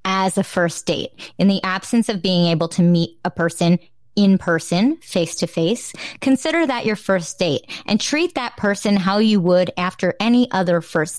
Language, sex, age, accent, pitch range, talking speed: English, female, 20-39, American, 175-220 Hz, 190 wpm